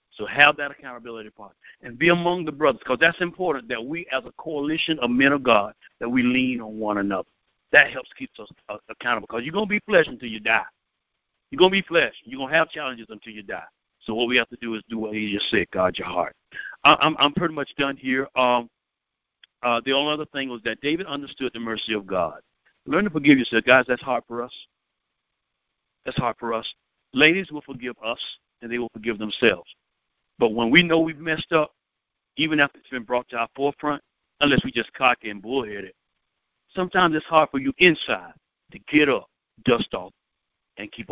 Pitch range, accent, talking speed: 115-145 Hz, American, 210 wpm